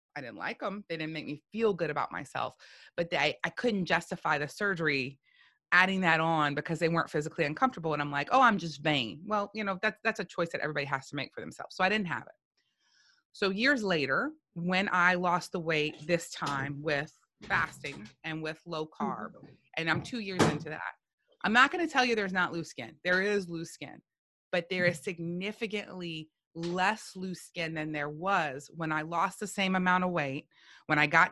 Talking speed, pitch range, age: 210 wpm, 155-185 Hz, 30-49